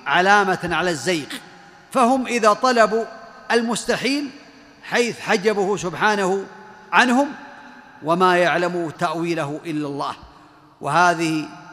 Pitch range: 170-230 Hz